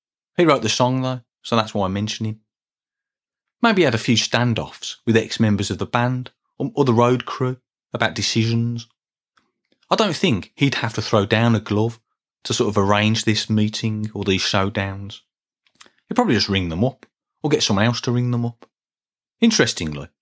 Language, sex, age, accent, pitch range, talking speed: English, male, 30-49, British, 105-125 Hz, 185 wpm